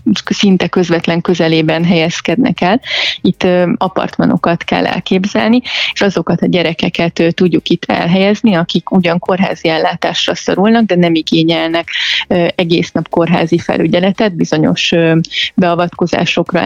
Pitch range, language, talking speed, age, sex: 165-190 Hz, Hungarian, 110 wpm, 20-39, female